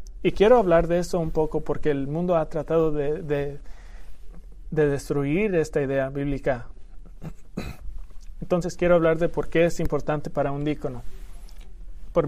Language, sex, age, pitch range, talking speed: English, male, 30-49, 145-170 Hz, 145 wpm